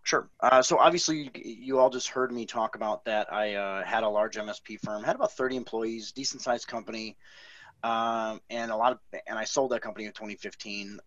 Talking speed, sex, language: 210 wpm, male, English